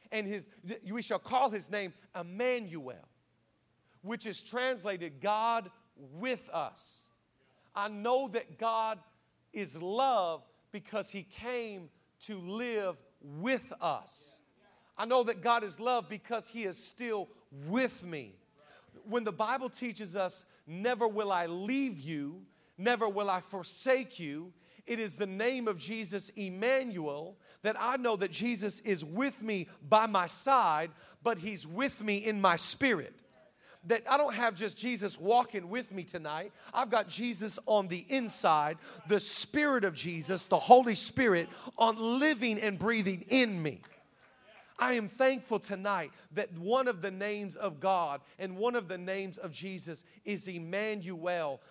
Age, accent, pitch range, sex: 40-59, American, 185-235 Hz, male